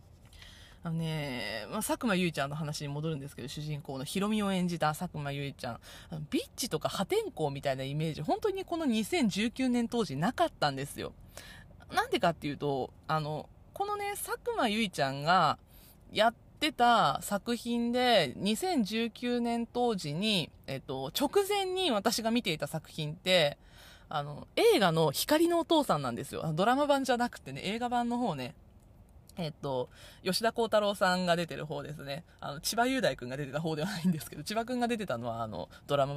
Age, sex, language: 20-39, female, Japanese